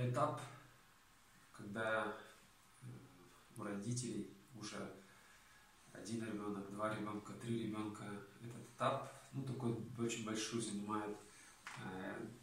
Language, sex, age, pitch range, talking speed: Russian, male, 20-39, 100-120 Hz, 90 wpm